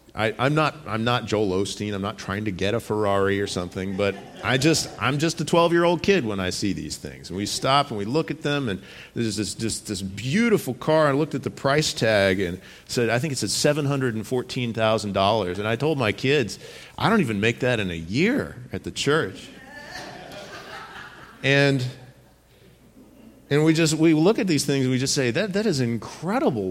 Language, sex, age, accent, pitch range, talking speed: English, male, 40-59, American, 100-130 Hz, 215 wpm